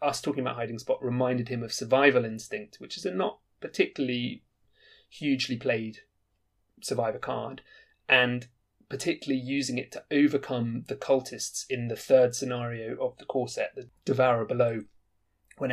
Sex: male